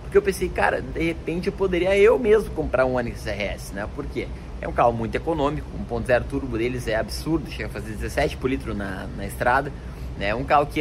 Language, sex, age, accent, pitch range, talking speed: Portuguese, male, 20-39, Brazilian, 125-185 Hz, 220 wpm